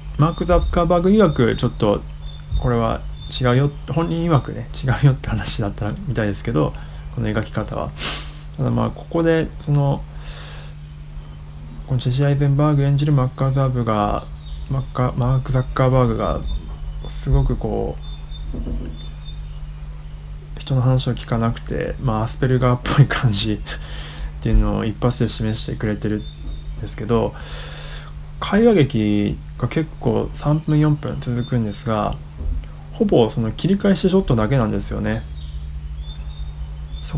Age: 20-39